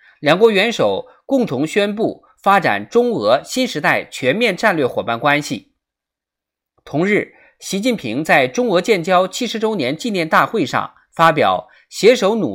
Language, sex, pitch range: Chinese, male, 175-245 Hz